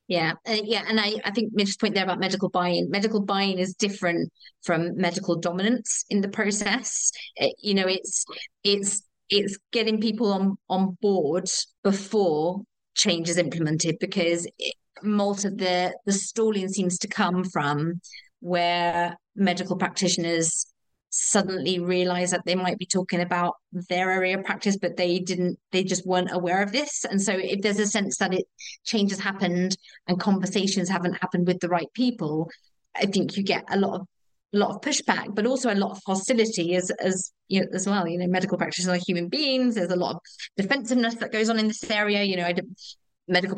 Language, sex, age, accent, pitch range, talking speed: English, female, 30-49, British, 180-205 Hz, 185 wpm